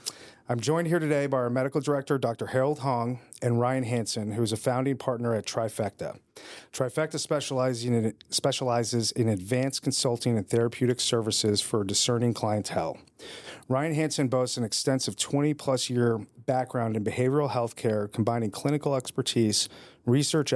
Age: 40-59